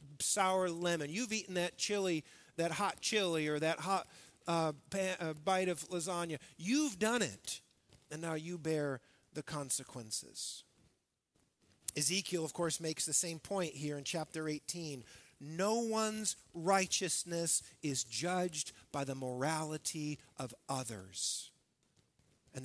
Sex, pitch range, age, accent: male, 150-195 Hz, 50-69, American